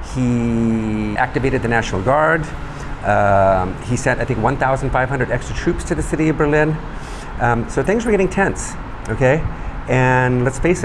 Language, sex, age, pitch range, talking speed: English, male, 50-69, 110-150 Hz, 155 wpm